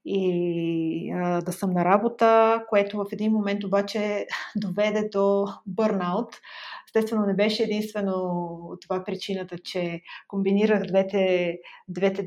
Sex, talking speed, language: female, 115 wpm, Bulgarian